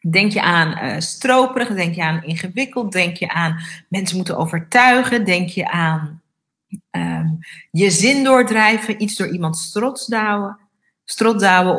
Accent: Dutch